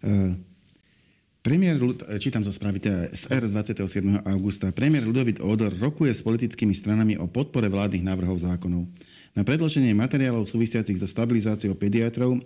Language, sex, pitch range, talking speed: Slovak, male, 95-115 Hz, 130 wpm